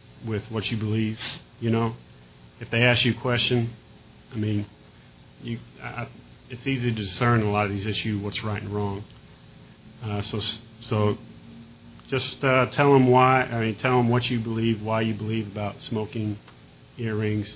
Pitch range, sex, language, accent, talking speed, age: 105-120 Hz, male, English, American, 170 wpm, 40-59